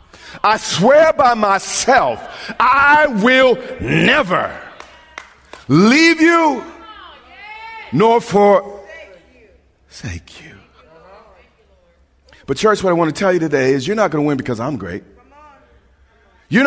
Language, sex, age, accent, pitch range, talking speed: English, male, 50-69, American, 180-275 Hz, 115 wpm